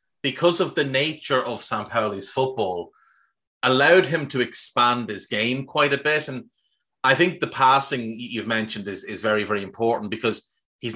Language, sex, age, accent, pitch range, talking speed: English, male, 30-49, Irish, 110-140 Hz, 165 wpm